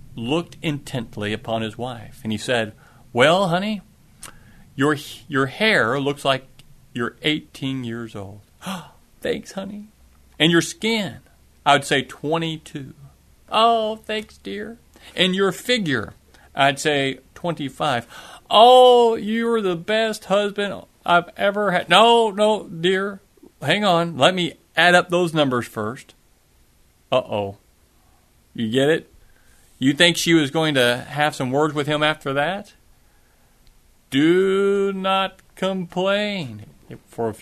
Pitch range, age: 125-190 Hz, 40-59